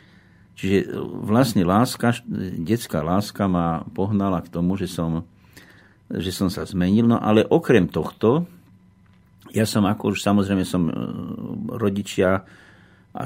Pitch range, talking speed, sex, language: 90-110 Hz, 120 wpm, male, Slovak